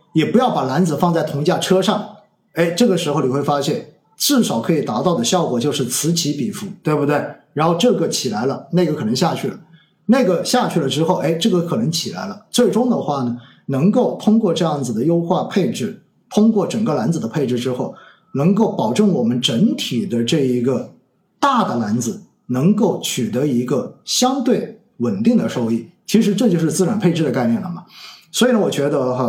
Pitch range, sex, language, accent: 160-210 Hz, male, Chinese, native